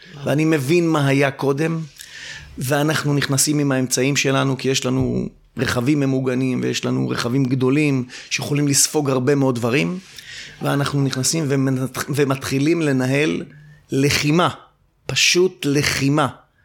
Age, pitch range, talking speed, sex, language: 30-49, 130-150 Hz, 115 wpm, male, Hebrew